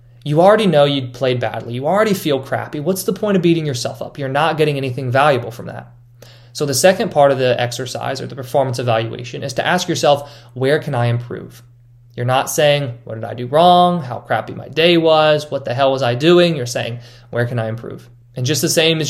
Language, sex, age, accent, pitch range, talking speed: English, male, 20-39, American, 120-150 Hz, 230 wpm